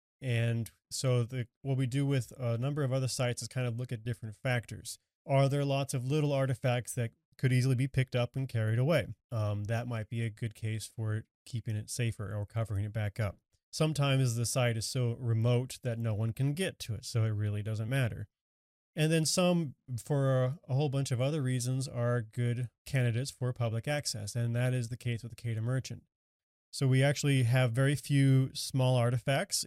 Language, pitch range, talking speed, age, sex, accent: English, 115-135 Hz, 205 wpm, 30-49, male, American